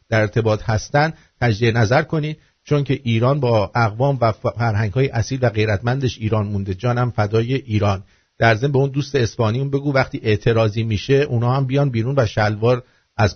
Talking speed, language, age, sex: 165 wpm, English, 50-69, male